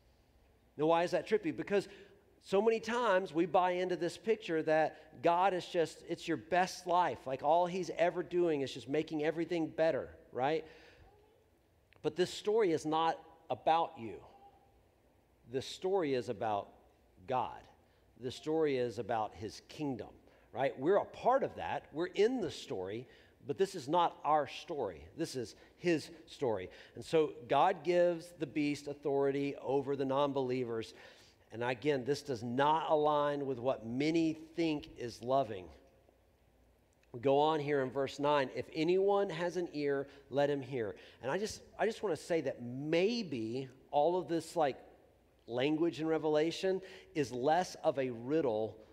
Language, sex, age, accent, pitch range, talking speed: English, male, 50-69, American, 130-170 Hz, 160 wpm